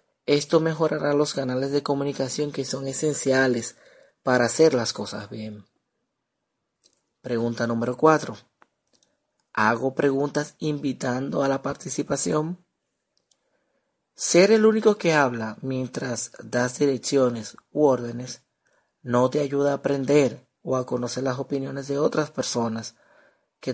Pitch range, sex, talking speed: 120-145 Hz, male, 120 wpm